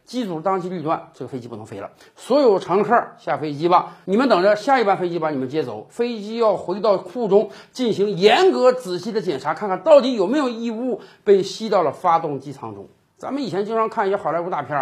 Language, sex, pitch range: Chinese, male, 180-290 Hz